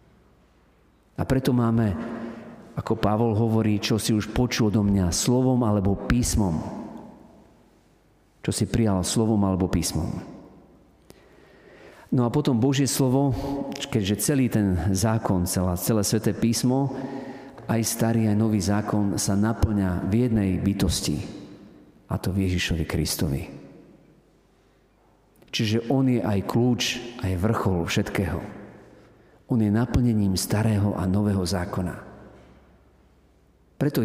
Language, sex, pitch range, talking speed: Slovak, male, 90-115 Hz, 115 wpm